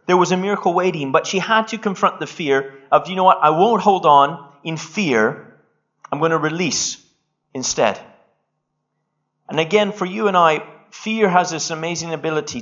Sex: male